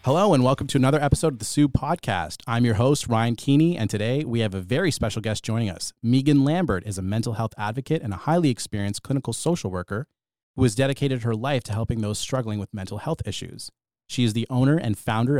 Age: 30-49